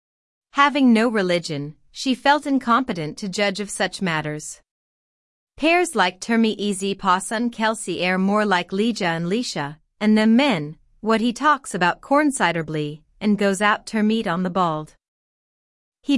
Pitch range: 175-230 Hz